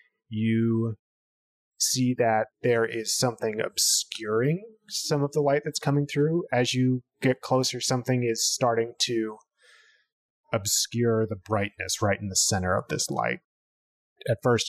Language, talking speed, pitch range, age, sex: English, 140 wpm, 100-120 Hz, 30-49, male